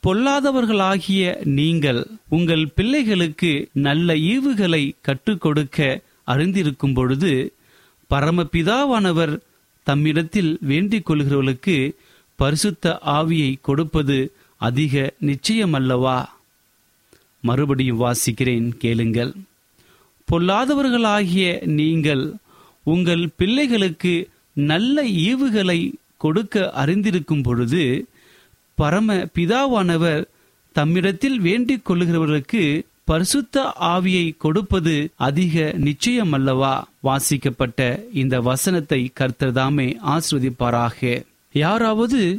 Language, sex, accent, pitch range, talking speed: Tamil, male, native, 140-185 Hz, 65 wpm